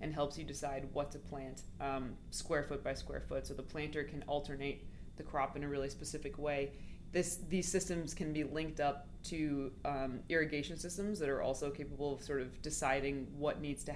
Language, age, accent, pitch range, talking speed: English, 20-39, American, 130-150 Hz, 200 wpm